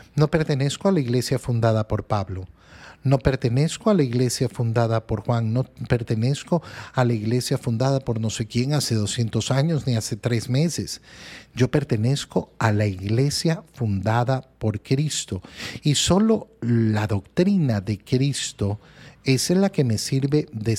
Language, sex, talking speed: Spanish, male, 155 wpm